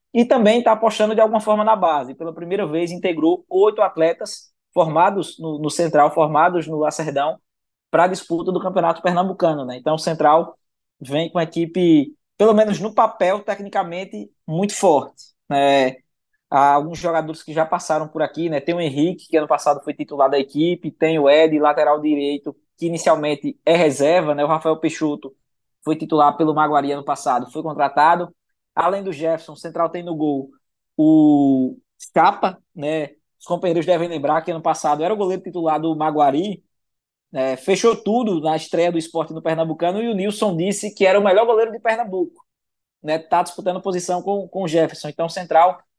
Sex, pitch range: male, 150-190 Hz